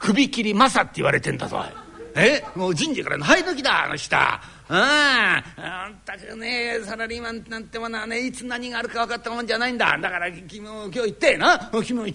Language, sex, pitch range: Japanese, male, 200-270 Hz